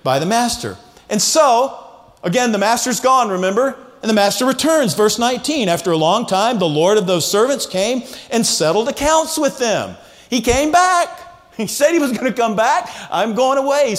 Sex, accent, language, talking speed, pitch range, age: male, American, English, 195 wpm, 185-250 Hz, 50-69